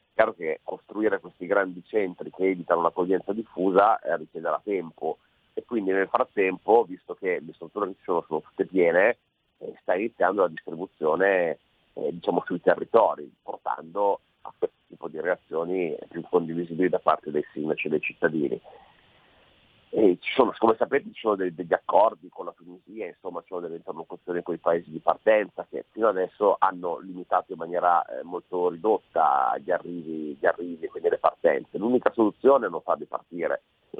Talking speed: 170 wpm